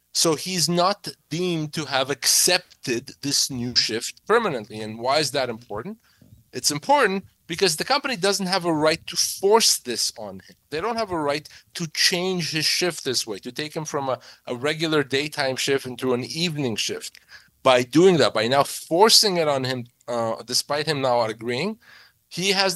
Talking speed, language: 185 wpm, English